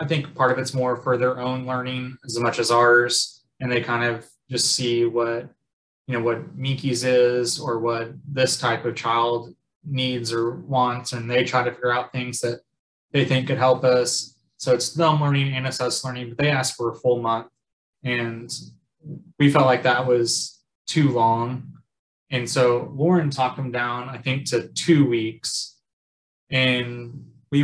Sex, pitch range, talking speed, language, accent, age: male, 120-130 Hz, 180 wpm, English, American, 20-39